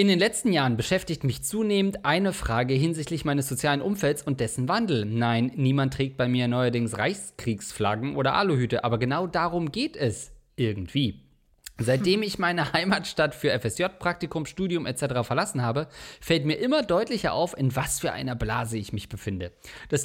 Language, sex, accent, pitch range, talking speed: German, male, German, 125-185 Hz, 165 wpm